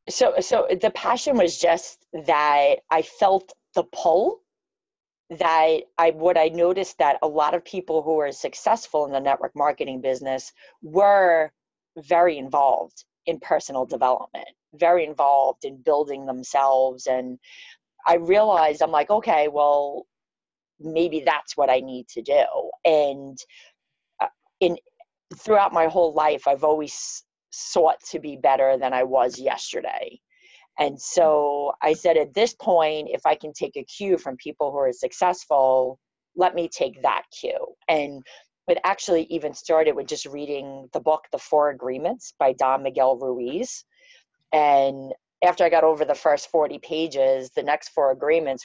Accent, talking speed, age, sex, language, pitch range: American, 150 wpm, 30-49, female, English, 140-175 Hz